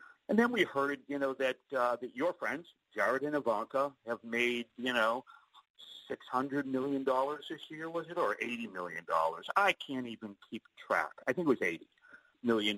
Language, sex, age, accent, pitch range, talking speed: English, male, 50-69, American, 100-125 Hz, 195 wpm